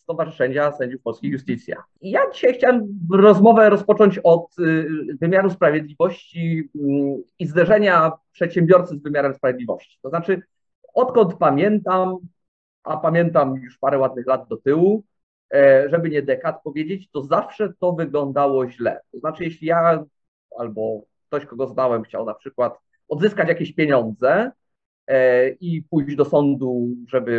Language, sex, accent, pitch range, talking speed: English, male, Polish, 145-195 Hz, 125 wpm